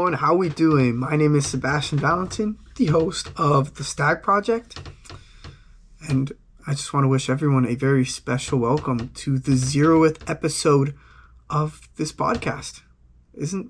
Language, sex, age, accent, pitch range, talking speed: English, male, 20-39, American, 120-150 Hz, 150 wpm